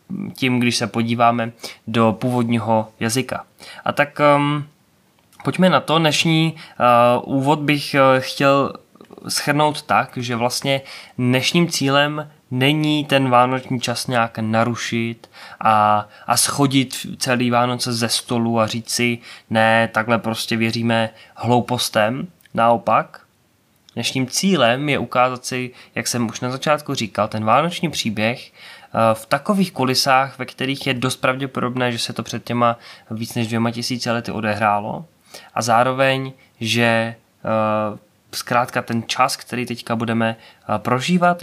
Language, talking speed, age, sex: Czech, 130 wpm, 20-39, male